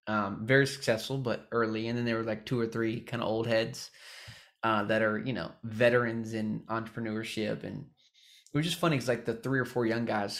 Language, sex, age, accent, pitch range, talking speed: English, male, 20-39, American, 110-130 Hz, 220 wpm